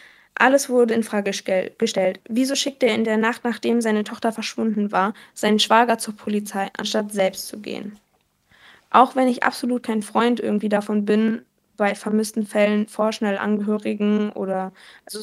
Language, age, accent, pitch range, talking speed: German, 10-29, German, 210-235 Hz, 160 wpm